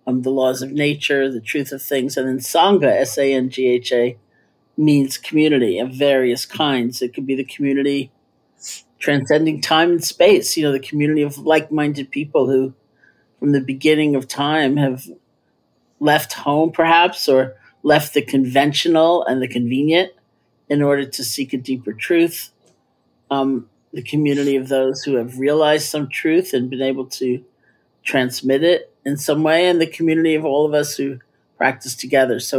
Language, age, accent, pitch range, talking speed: English, 50-69, American, 130-155 Hz, 175 wpm